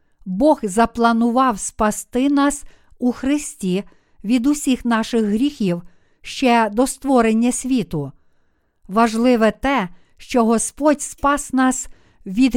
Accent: native